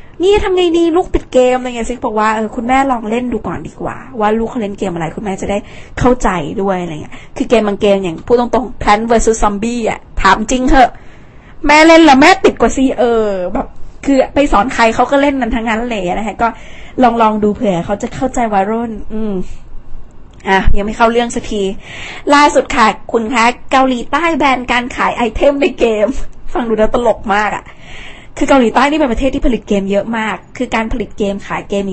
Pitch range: 195-245 Hz